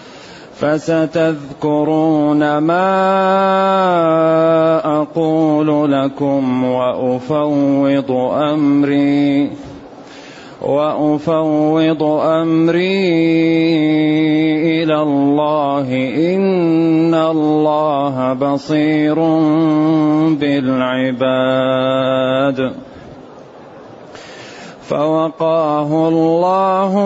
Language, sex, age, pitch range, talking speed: Arabic, male, 30-49, 140-160 Hz, 35 wpm